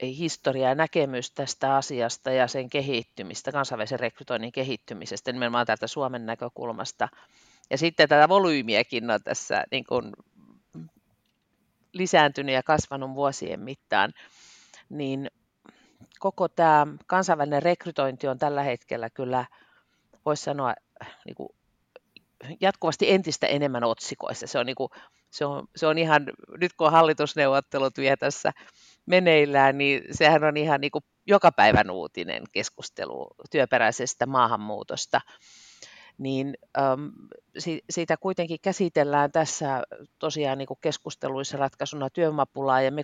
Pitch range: 130-155 Hz